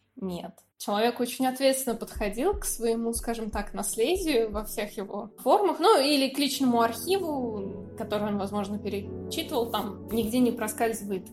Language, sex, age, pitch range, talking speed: Russian, female, 20-39, 225-290 Hz, 145 wpm